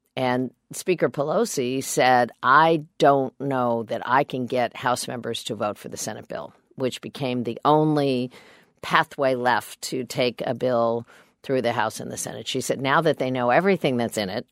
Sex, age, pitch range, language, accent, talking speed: female, 50-69, 120-140 Hz, English, American, 185 wpm